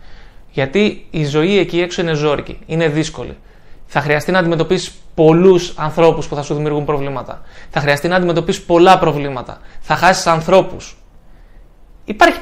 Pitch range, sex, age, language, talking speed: 150-195 Hz, male, 20-39, Greek, 145 wpm